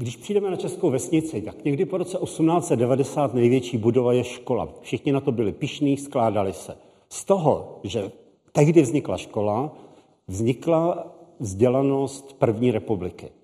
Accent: native